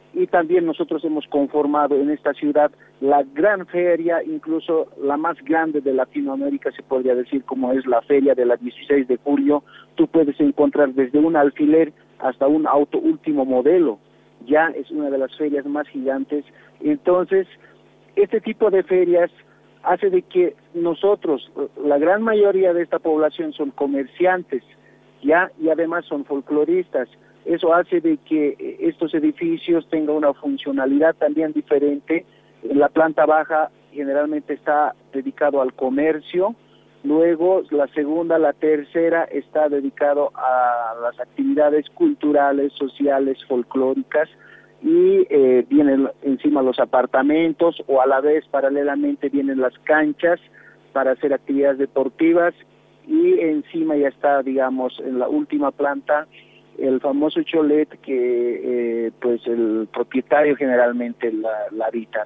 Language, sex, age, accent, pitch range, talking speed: Spanish, male, 50-69, Mexican, 135-170 Hz, 135 wpm